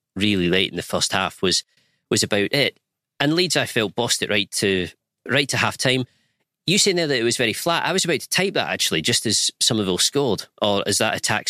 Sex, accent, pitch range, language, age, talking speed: male, British, 95-135 Hz, English, 40-59, 235 wpm